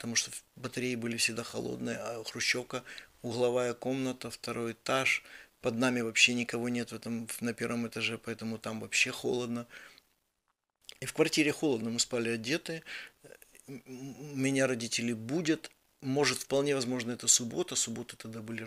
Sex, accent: male, native